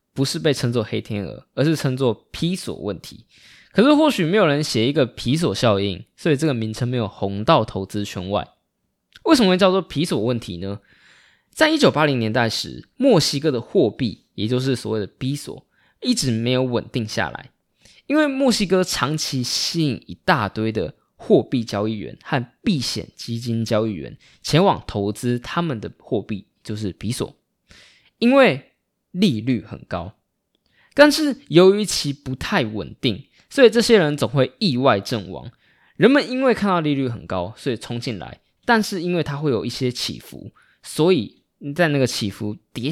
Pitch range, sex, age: 110-170 Hz, male, 20-39